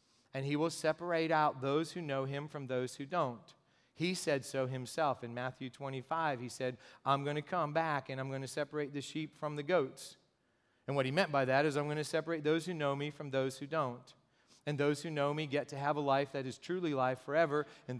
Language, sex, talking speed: English, male, 240 wpm